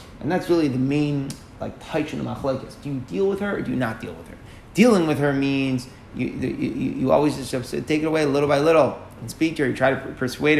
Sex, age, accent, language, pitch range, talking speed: male, 30-49, American, English, 115-150 Hz, 260 wpm